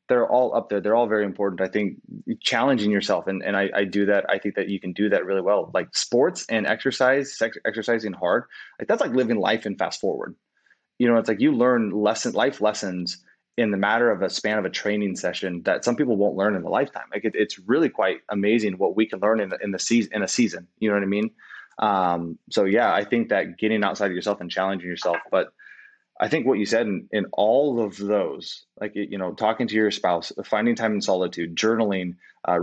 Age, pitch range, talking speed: 20-39, 95-110 Hz, 235 wpm